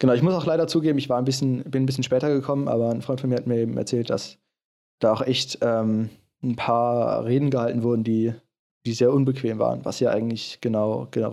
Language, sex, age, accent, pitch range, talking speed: German, male, 20-39, German, 115-135 Hz, 235 wpm